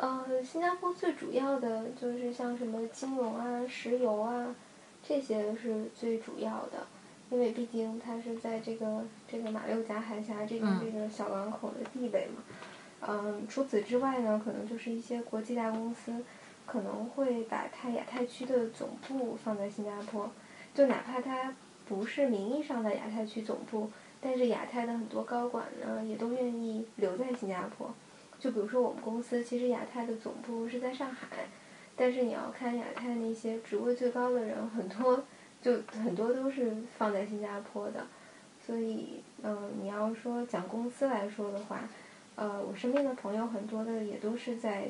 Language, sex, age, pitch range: Chinese, female, 10-29, 220-250 Hz